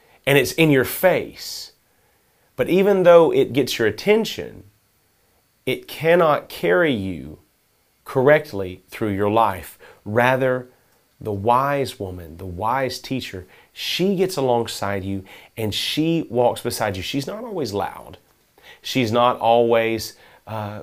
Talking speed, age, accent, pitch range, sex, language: 125 wpm, 30-49, American, 105-140 Hz, male, English